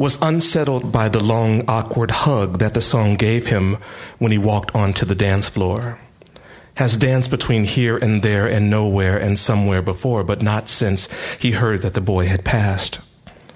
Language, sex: English, male